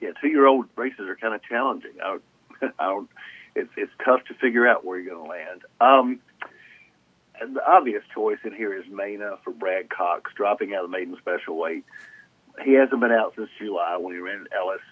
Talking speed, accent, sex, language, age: 210 wpm, American, male, English, 50-69